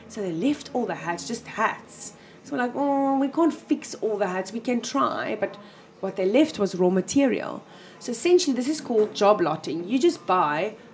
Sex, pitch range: female, 185-240 Hz